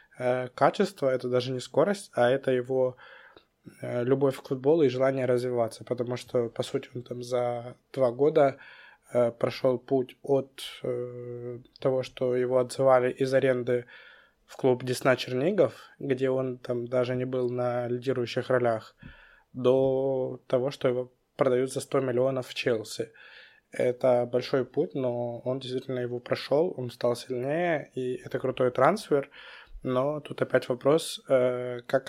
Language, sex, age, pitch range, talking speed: Russian, male, 20-39, 125-135 Hz, 140 wpm